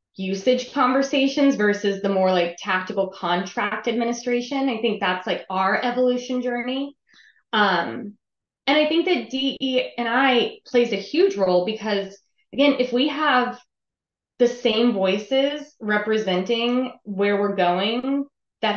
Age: 20-39